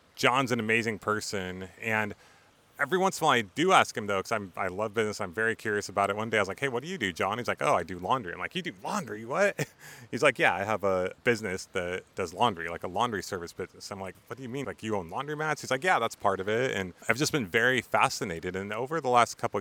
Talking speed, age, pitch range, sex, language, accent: 275 wpm, 30-49, 95-115 Hz, male, English, American